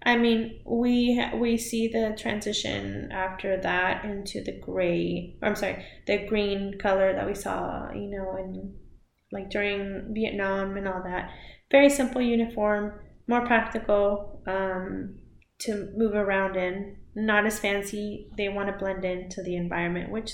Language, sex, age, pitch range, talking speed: English, female, 20-39, 195-225 Hz, 150 wpm